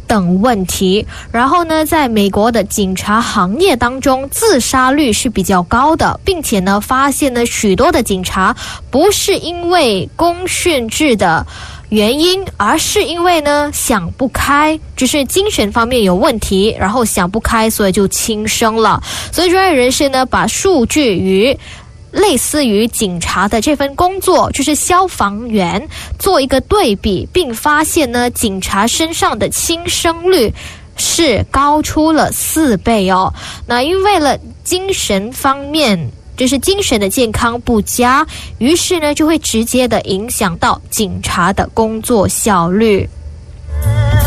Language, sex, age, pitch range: Indonesian, female, 10-29, 200-300 Hz